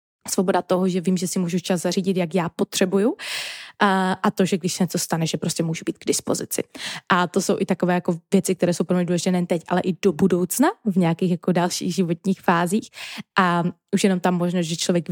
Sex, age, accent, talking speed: female, 20-39, native, 220 wpm